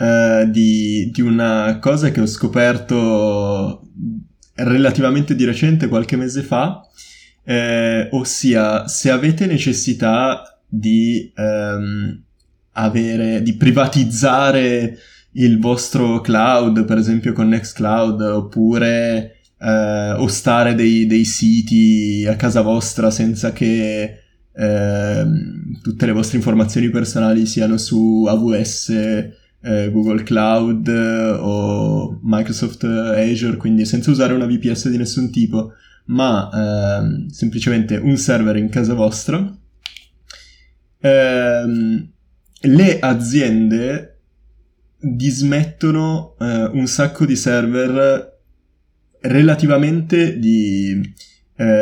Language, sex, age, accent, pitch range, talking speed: Italian, male, 20-39, native, 110-130 Hz, 95 wpm